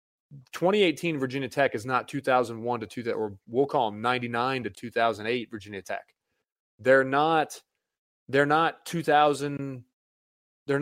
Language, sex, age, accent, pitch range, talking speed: English, male, 20-39, American, 115-145 Hz, 130 wpm